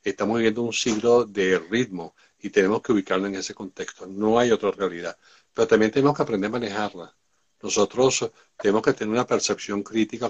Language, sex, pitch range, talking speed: Spanish, male, 100-125 Hz, 180 wpm